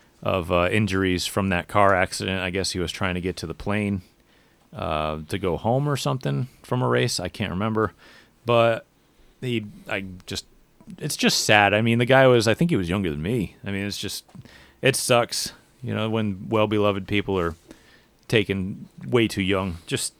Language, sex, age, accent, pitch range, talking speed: English, male, 30-49, American, 95-120 Hz, 195 wpm